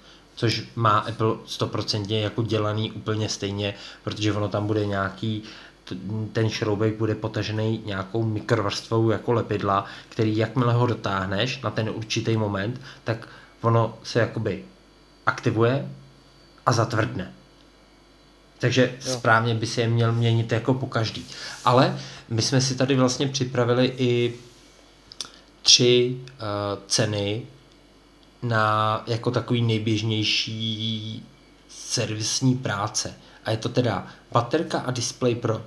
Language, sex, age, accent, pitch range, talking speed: Czech, male, 20-39, native, 105-120 Hz, 120 wpm